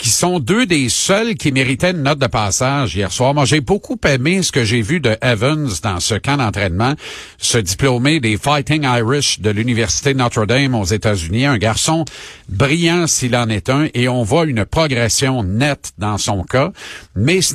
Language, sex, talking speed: French, male, 190 wpm